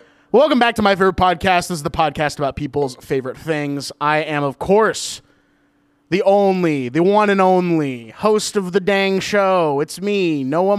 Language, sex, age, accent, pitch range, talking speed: English, male, 20-39, American, 160-210 Hz, 180 wpm